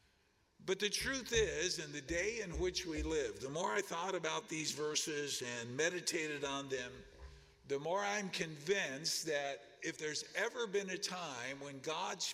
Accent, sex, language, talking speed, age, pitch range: American, male, English, 170 wpm, 50-69, 140-195 Hz